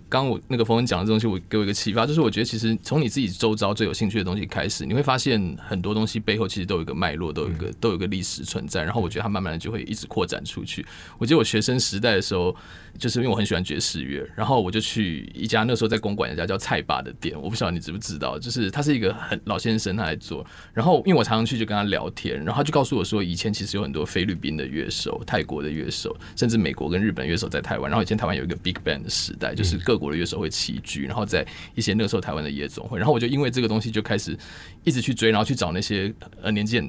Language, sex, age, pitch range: Chinese, male, 20-39, 95-115 Hz